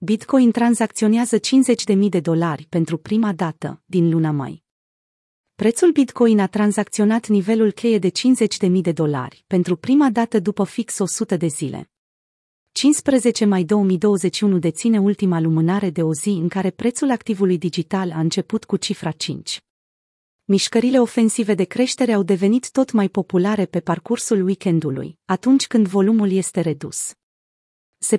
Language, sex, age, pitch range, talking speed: Romanian, female, 30-49, 175-225 Hz, 145 wpm